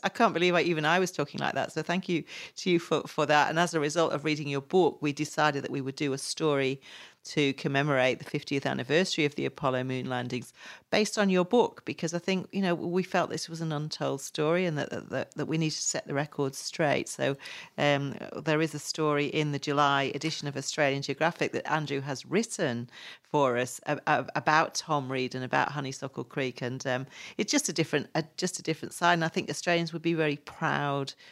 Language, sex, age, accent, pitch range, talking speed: English, female, 40-59, British, 140-175 Hz, 225 wpm